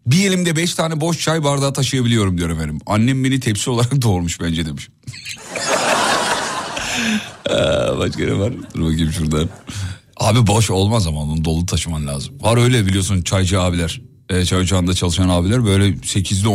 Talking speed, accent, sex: 160 wpm, native, male